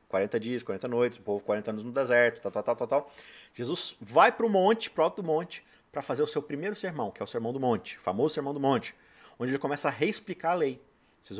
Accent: Brazilian